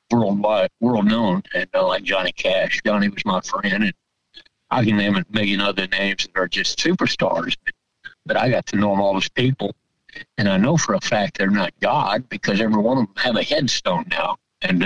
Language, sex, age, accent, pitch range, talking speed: English, male, 60-79, American, 105-155 Hz, 205 wpm